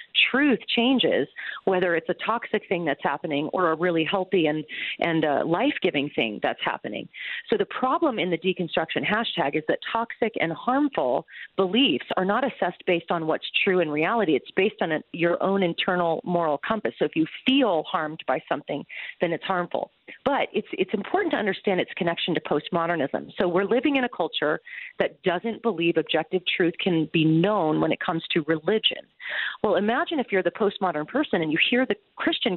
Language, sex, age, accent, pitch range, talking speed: English, female, 40-59, American, 160-220 Hz, 185 wpm